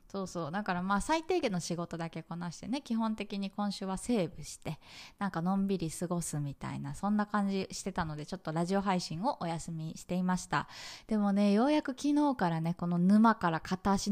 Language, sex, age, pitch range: Japanese, female, 20-39, 170-230 Hz